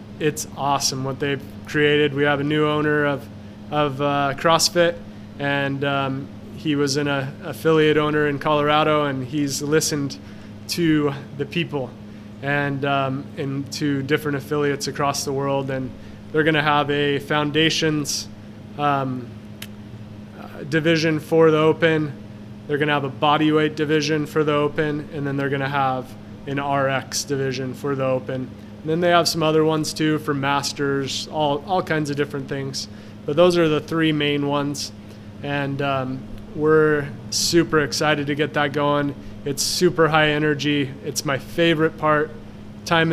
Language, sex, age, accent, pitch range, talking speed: English, male, 20-39, American, 130-150 Hz, 155 wpm